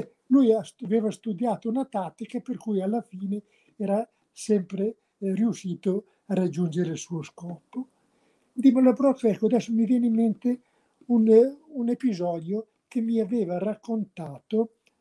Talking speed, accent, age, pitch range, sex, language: 115 wpm, native, 60-79, 175-230 Hz, male, Italian